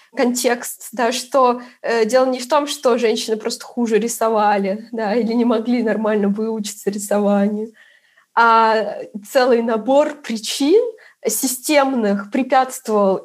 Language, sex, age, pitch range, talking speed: Russian, female, 20-39, 225-270 Hz, 120 wpm